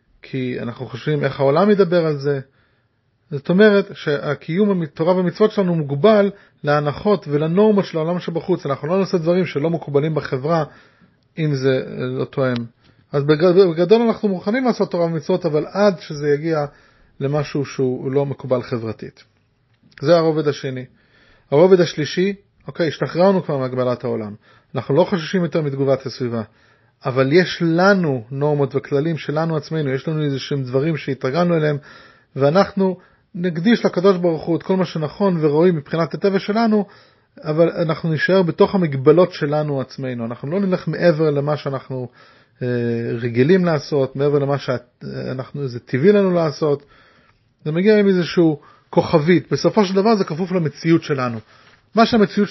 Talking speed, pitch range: 140 wpm, 135-185 Hz